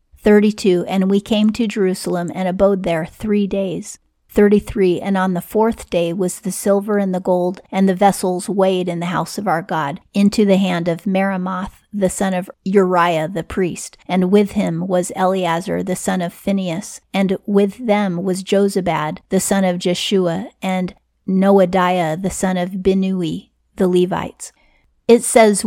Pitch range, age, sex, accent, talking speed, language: 175-200 Hz, 40-59, female, American, 170 wpm, English